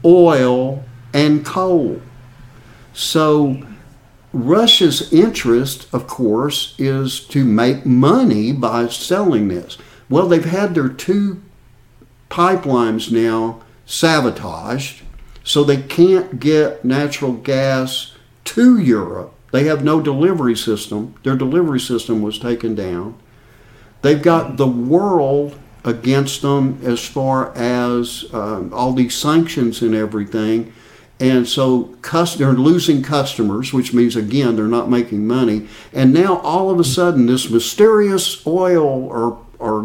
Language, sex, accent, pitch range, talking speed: English, male, American, 120-155 Hz, 120 wpm